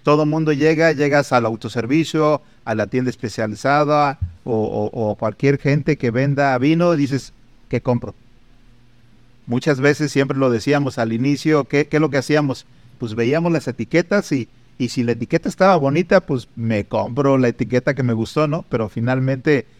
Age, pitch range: 50-69, 115-145 Hz